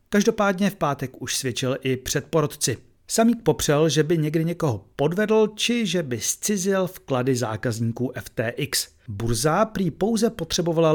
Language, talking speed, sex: Czech, 135 wpm, male